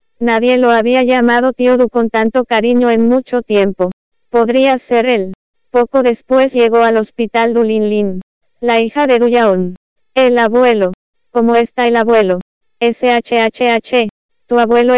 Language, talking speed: English, 150 wpm